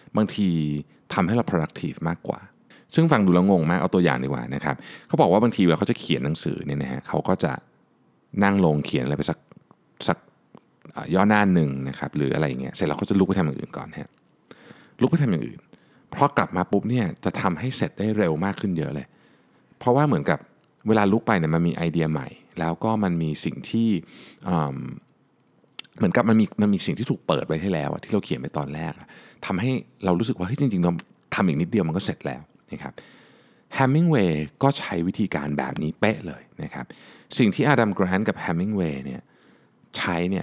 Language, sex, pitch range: Thai, male, 75-100 Hz